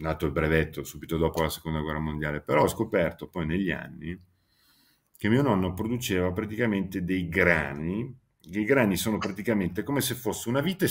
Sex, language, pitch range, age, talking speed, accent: male, Italian, 80-105 Hz, 50-69, 175 wpm, native